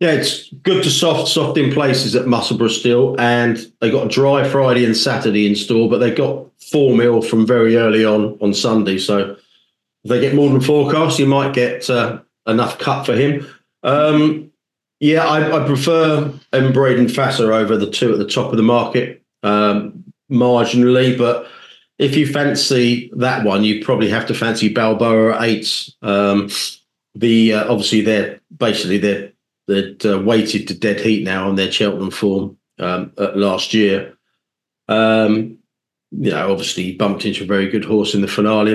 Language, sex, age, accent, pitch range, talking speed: English, male, 40-59, British, 105-130 Hz, 180 wpm